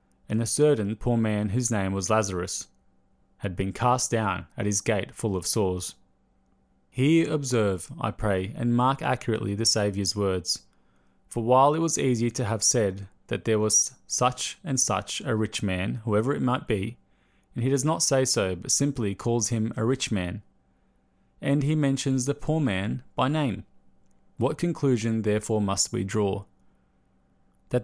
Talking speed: 170 wpm